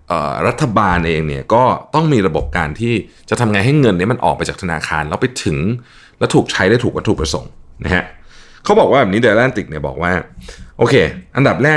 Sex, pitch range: male, 90-130 Hz